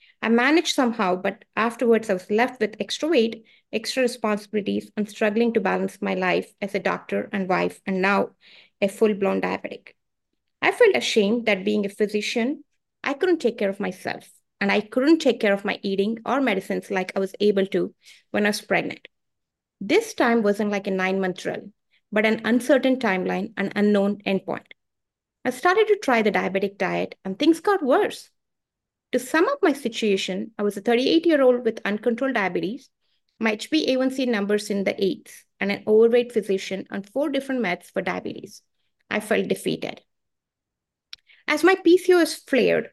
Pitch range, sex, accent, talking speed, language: 200-250 Hz, female, Indian, 170 wpm, English